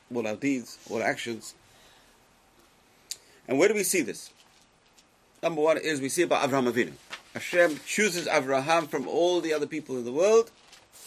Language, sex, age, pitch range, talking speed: English, male, 40-59, 125-175 Hz, 170 wpm